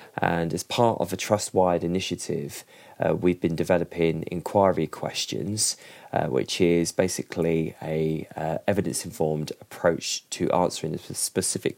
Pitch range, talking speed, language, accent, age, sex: 80-95 Hz, 125 wpm, English, British, 20-39, male